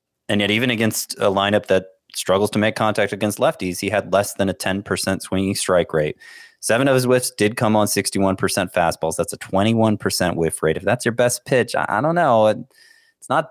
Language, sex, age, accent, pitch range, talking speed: English, male, 30-49, American, 90-120 Hz, 205 wpm